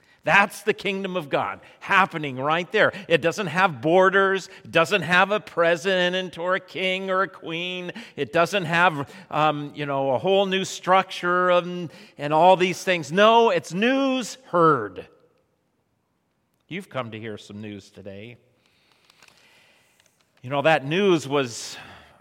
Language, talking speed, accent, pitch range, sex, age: English, 145 wpm, American, 140-185 Hz, male, 40-59